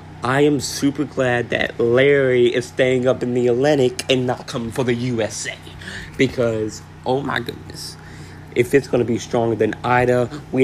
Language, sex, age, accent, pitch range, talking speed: English, male, 20-39, American, 110-125 Hz, 175 wpm